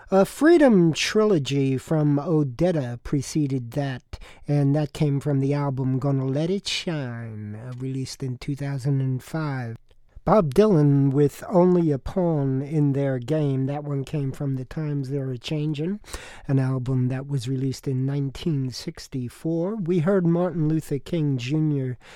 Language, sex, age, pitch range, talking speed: English, male, 50-69, 130-160 Hz, 140 wpm